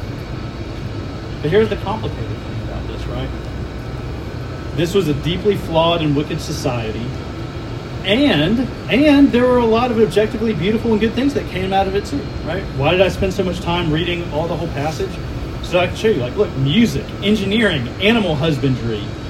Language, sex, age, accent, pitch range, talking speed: English, male, 30-49, American, 120-175 Hz, 180 wpm